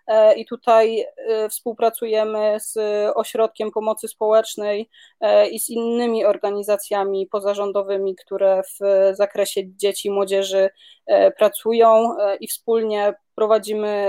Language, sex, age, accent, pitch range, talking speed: Polish, female, 20-39, native, 205-230 Hz, 95 wpm